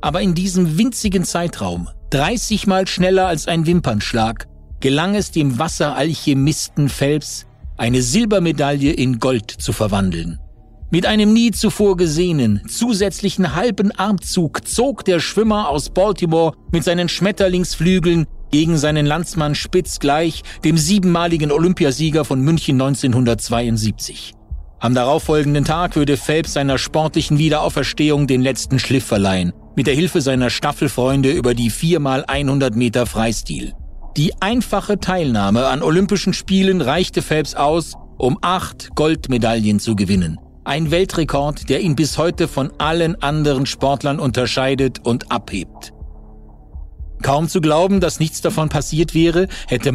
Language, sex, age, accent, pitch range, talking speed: German, male, 50-69, German, 125-175 Hz, 125 wpm